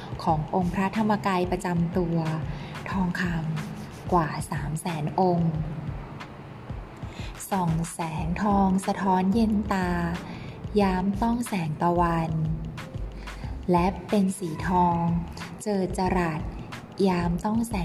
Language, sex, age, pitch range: Thai, female, 20-39, 165-195 Hz